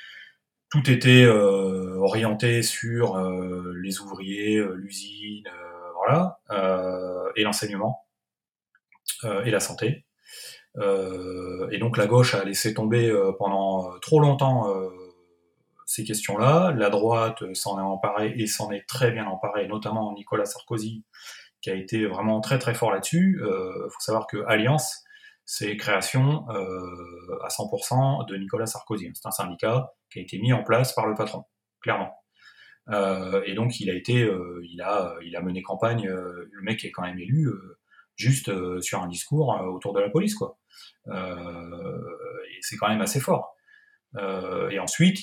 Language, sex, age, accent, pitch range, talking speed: French, male, 30-49, French, 95-120 Hz, 170 wpm